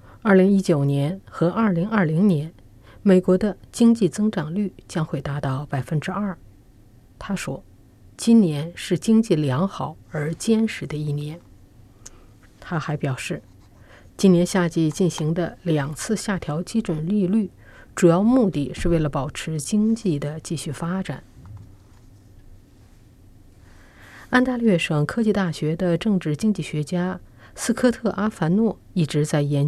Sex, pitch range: female, 135-190 Hz